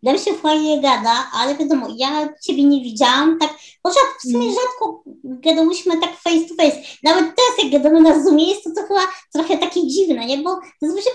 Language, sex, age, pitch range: Polish, male, 20-39, 275-350 Hz